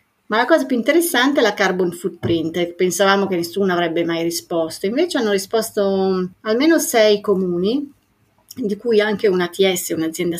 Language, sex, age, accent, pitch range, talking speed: Italian, female, 40-59, native, 175-220 Hz, 150 wpm